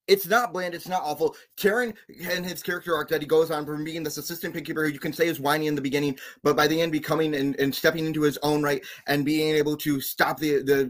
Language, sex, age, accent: English, male, 20-39, American